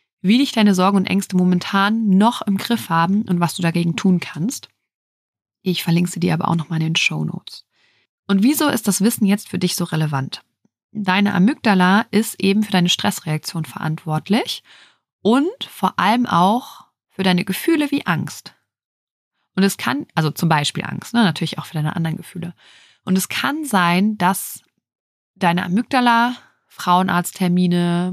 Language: German